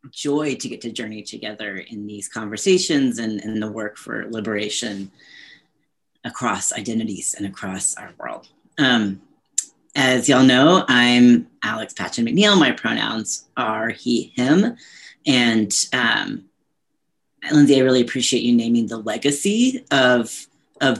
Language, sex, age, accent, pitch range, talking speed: English, female, 30-49, American, 115-135 Hz, 130 wpm